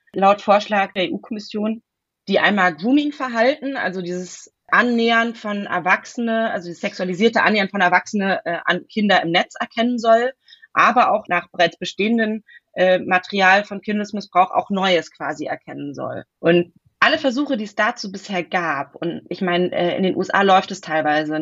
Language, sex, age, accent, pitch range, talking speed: German, female, 30-49, German, 180-230 Hz, 150 wpm